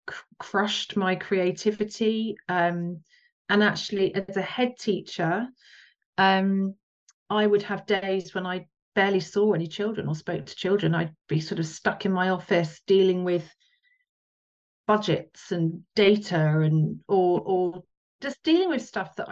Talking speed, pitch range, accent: 145 wpm, 170-205 Hz, British